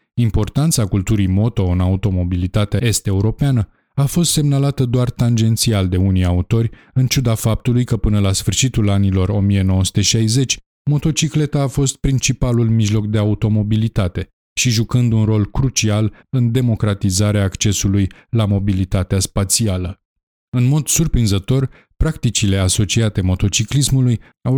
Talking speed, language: 115 wpm, Romanian